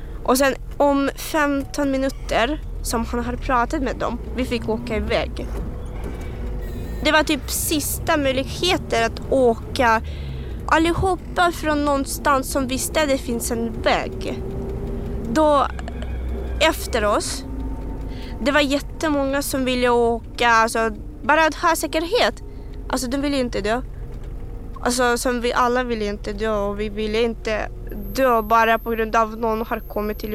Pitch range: 230-300 Hz